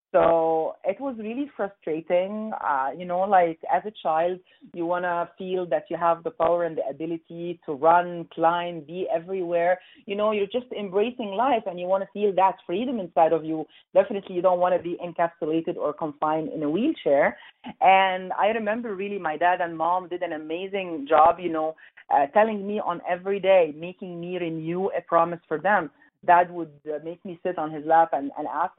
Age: 40-59